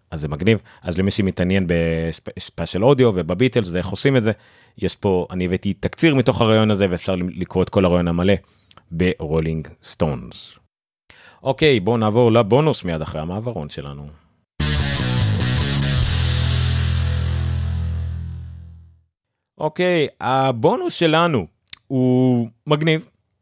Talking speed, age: 110 wpm, 30-49